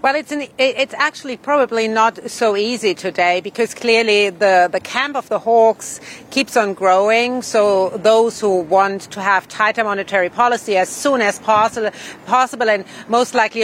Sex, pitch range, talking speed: female, 200-235 Hz, 165 wpm